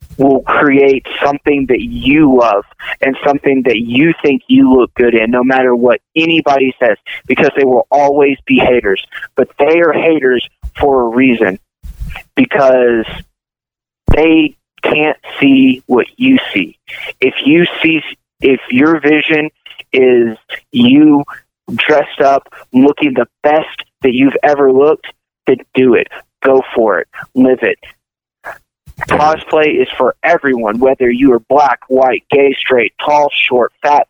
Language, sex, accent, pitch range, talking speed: English, male, American, 130-155 Hz, 140 wpm